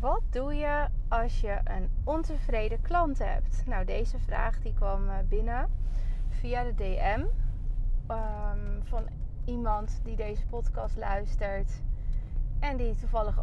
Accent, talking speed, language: Dutch, 125 wpm, Dutch